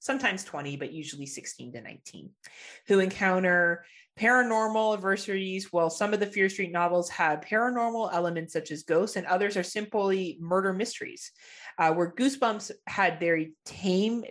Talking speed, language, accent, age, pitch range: 155 wpm, English, American, 30-49, 155-200 Hz